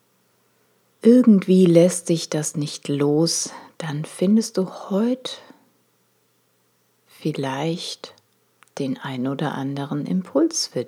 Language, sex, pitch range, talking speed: German, female, 140-195 Hz, 95 wpm